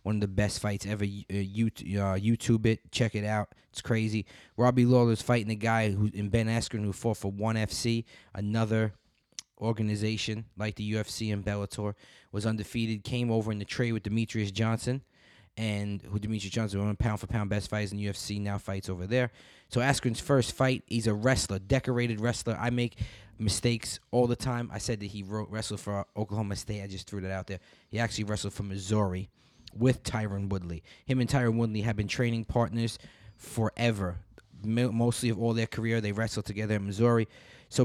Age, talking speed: 20-39, 190 wpm